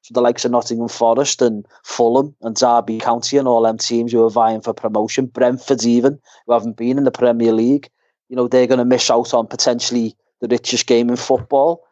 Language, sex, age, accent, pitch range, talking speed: English, male, 30-49, British, 115-130 Hz, 215 wpm